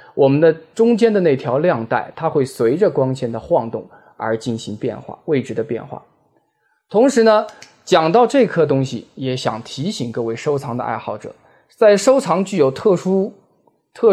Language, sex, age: Chinese, male, 20-39